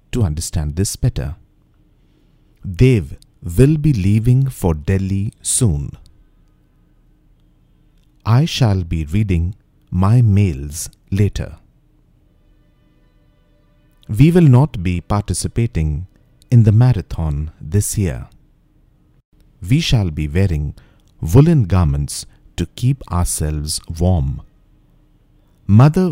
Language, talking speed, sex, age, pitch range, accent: English, 90 wpm, male, 50-69, 80-125 Hz, Indian